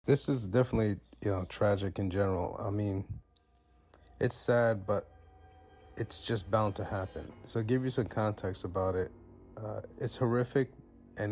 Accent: American